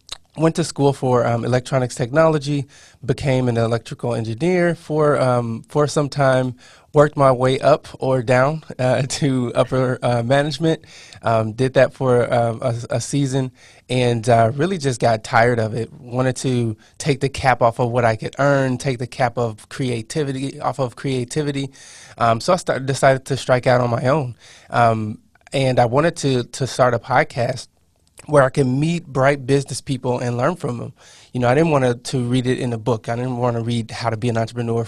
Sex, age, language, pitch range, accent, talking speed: male, 20-39, English, 120-135 Hz, American, 195 wpm